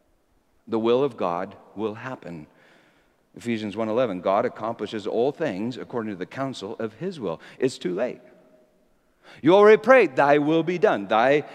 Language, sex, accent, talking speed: English, male, American, 155 wpm